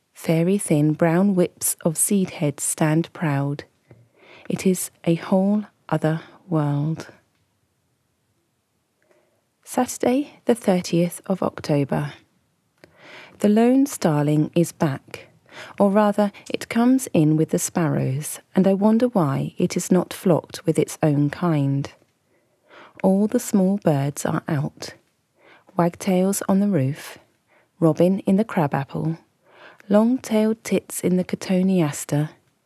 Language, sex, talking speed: English, female, 120 wpm